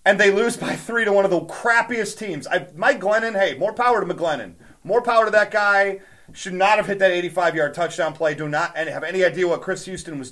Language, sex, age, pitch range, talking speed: English, male, 30-49, 180-235 Hz, 235 wpm